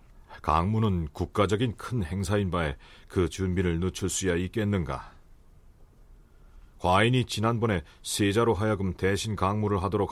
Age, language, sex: 40-59, Korean, male